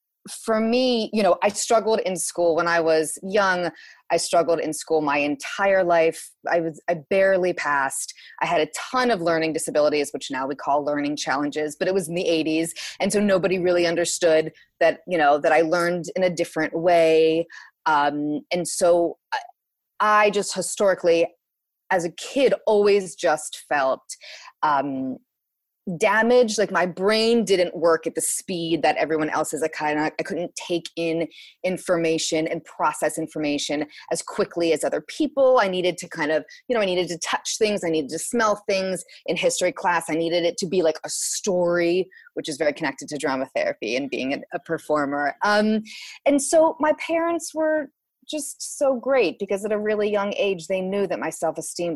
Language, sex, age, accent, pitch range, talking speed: English, female, 30-49, American, 160-210 Hz, 185 wpm